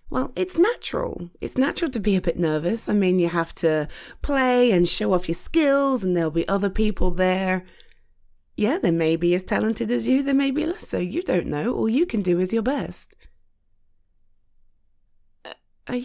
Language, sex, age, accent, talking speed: English, female, 20-39, British, 190 wpm